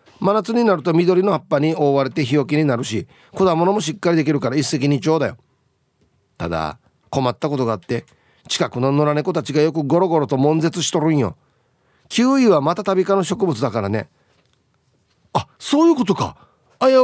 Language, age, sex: Japanese, 40-59, male